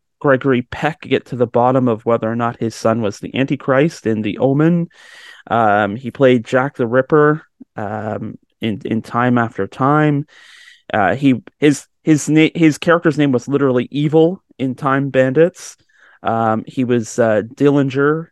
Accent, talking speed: American, 165 wpm